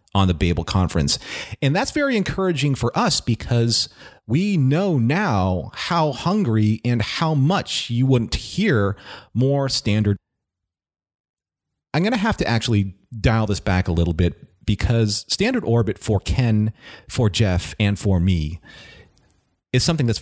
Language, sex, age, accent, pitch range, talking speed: English, male, 40-59, American, 95-120 Hz, 145 wpm